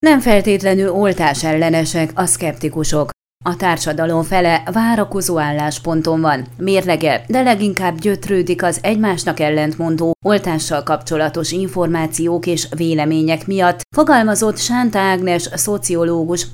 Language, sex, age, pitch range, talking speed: Hungarian, female, 30-49, 165-205 Hz, 100 wpm